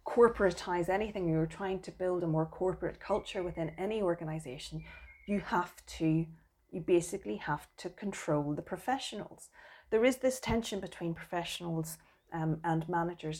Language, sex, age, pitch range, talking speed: English, female, 30-49, 155-185 Hz, 145 wpm